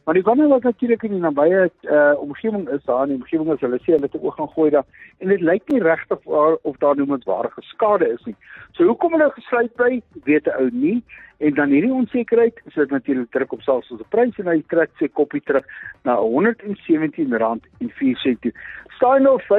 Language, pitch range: English, 140-235 Hz